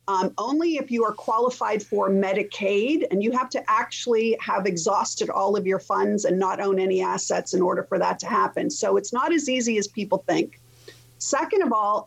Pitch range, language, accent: 190-255 Hz, English, American